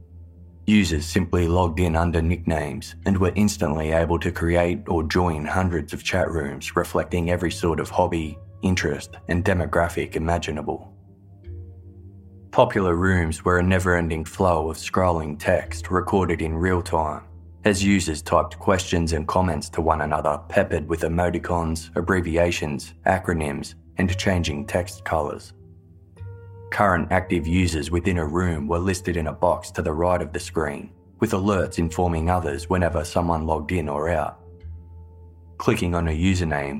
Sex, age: male, 20-39